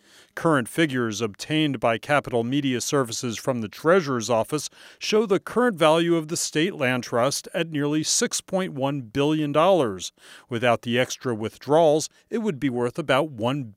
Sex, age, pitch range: male, 40-59, 120-155 Hz